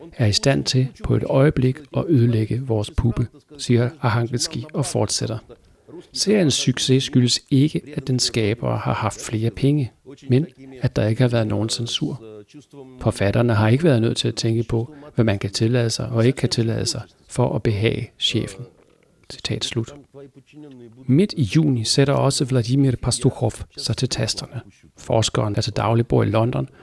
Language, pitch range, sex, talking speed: Danish, 110-130 Hz, male, 170 wpm